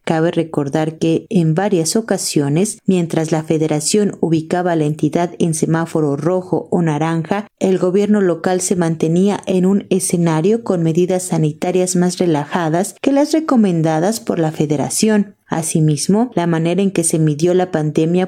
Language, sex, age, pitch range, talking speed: Spanish, female, 30-49, 160-195 Hz, 150 wpm